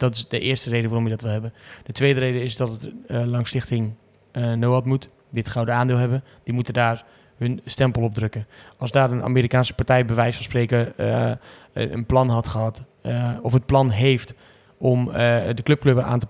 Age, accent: 20-39, Dutch